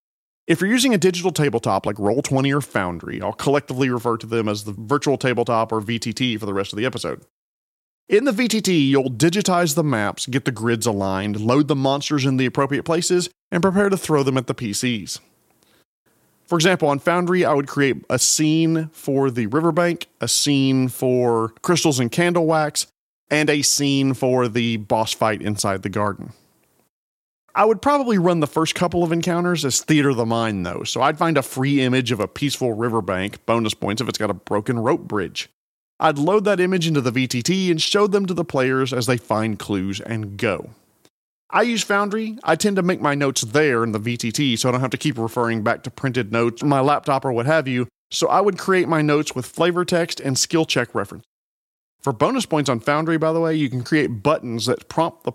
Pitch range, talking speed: 115-165 Hz, 210 wpm